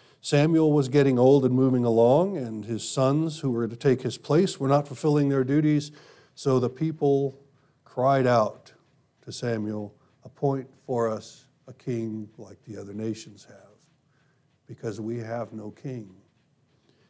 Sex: male